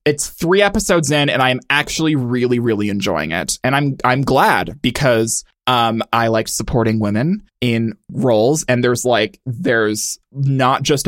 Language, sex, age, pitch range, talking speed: English, male, 20-39, 115-145 Hz, 165 wpm